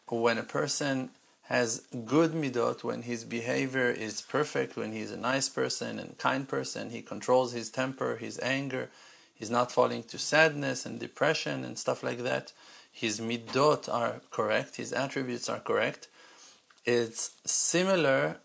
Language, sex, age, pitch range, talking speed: English, male, 40-59, 120-135 Hz, 150 wpm